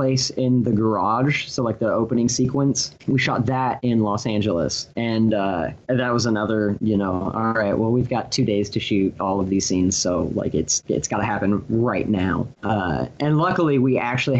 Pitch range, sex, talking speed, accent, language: 110-135 Hz, male, 195 wpm, American, English